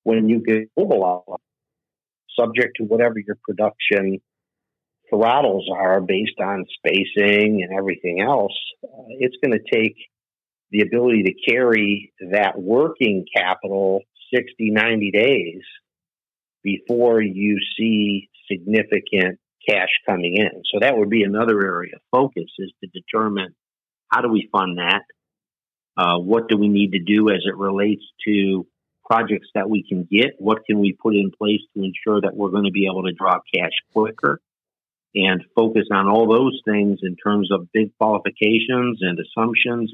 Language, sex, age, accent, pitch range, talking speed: English, male, 50-69, American, 95-110 Hz, 155 wpm